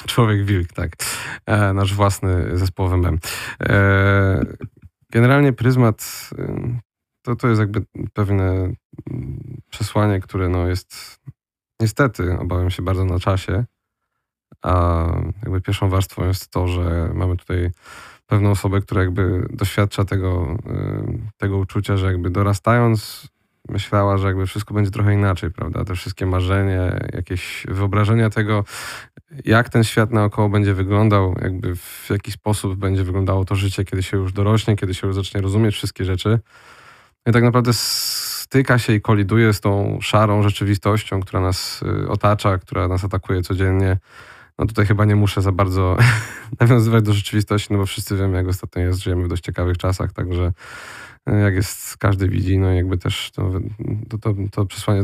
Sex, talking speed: male, 145 wpm